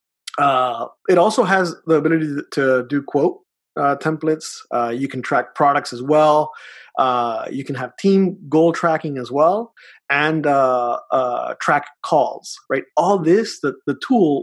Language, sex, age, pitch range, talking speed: English, male, 30-49, 130-165 Hz, 160 wpm